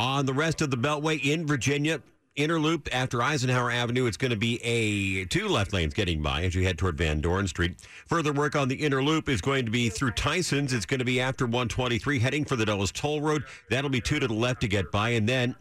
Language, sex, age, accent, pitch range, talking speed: English, male, 50-69, American, 100-135 Hz, 250 wpm